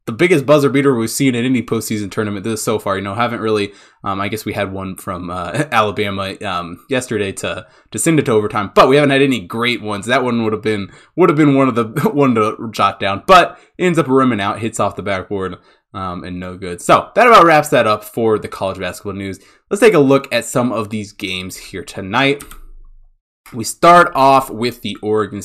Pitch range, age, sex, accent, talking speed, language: 105-140 Hz, 20-39, male, American, 230 wpm, English